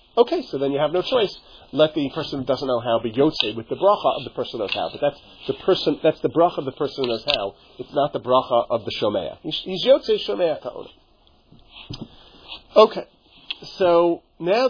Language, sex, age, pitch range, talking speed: English, male, 40-59, 120-165 Hz, 210 wpm